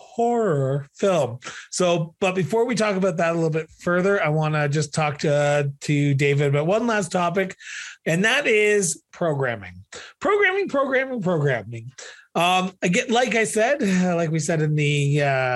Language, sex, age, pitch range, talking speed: English, male, 30-49, 145-200 Hz, 170 wpm